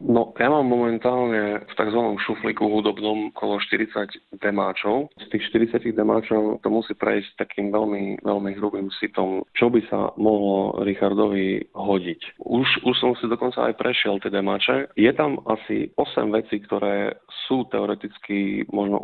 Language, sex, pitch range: Slovak, male, 100-115 Hz